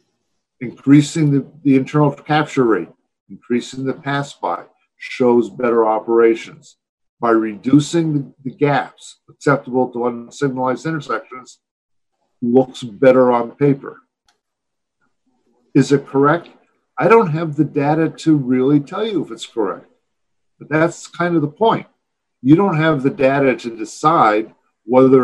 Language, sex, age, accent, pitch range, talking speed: English, male, 50-69, American, 120-150 Hz, 130 wpm